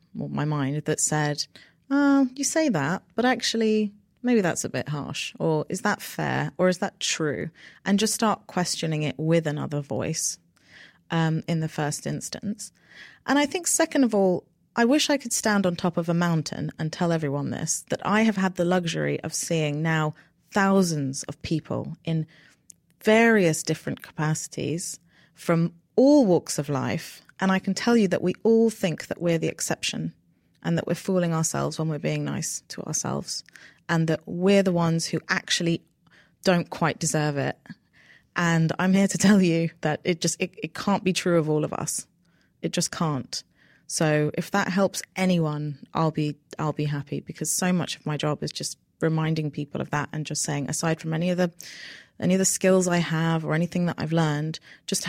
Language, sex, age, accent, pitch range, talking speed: English, female, 30-49, British, 155-190 Hz, 190 wpm